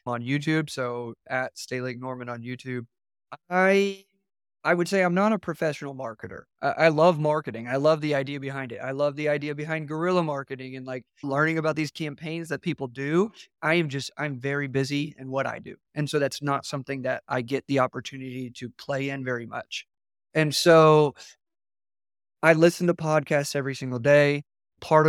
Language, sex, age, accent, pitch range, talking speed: English, male, 30-49, American, 130-155 Hz, 190 wpm